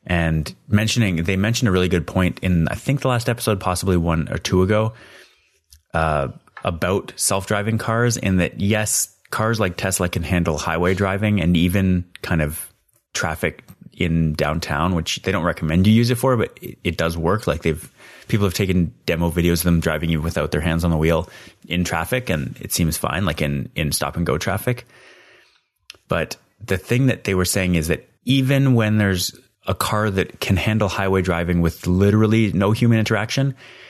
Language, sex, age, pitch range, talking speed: English, male, 30-49, 85-105 Hz, 190 wpm